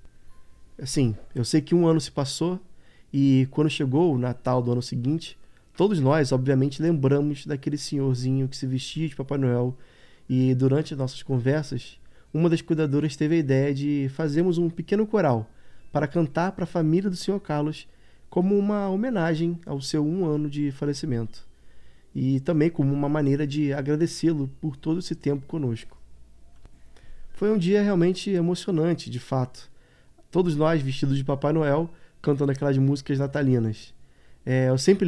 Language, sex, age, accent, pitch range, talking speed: Portuguese, male, 20-39, Brazilian, 130-165 Hz, 155 wpm